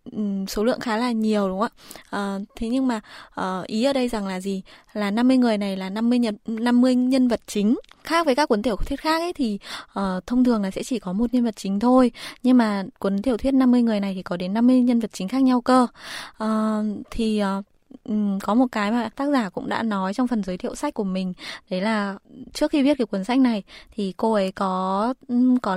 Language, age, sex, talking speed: Vietnamese, 20-39, female, 235 wpm